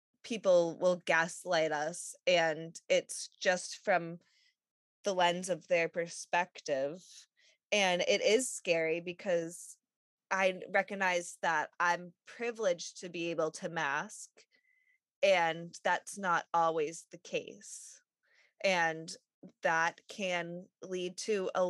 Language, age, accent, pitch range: English, 20-39, American, 170-220 Hz